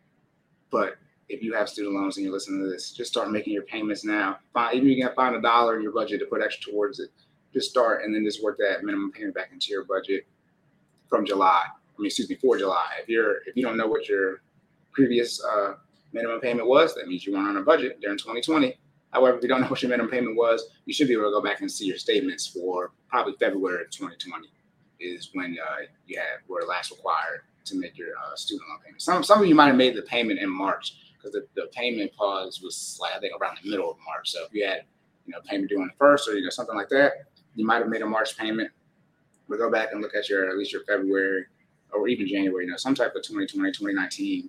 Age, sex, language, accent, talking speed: 30-49, male, English, American, 250 wpm